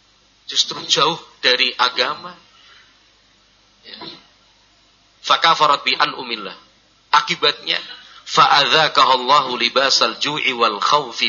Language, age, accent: Indonesian, 40-59, native